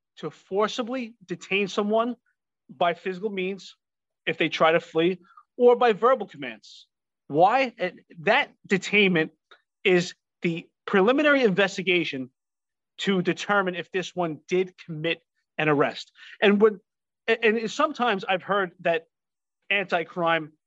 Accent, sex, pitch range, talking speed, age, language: American, male, 175-225 Hz, 120 wpm, 30-49, English